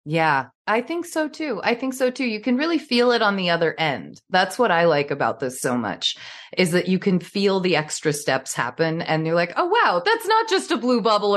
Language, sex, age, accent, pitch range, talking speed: English, female, 20-39, American, 170-245 Hz, 245 wpm